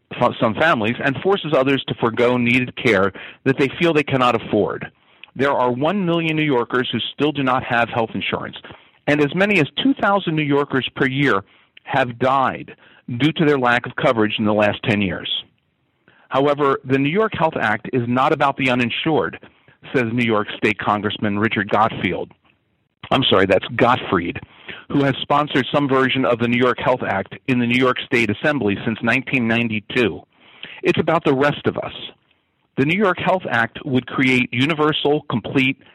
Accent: American